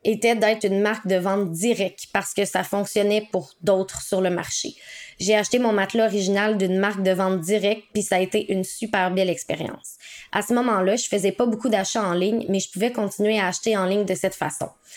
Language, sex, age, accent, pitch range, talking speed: English, female, 20-39, Canadian, 185-215 Hz, 220 wpm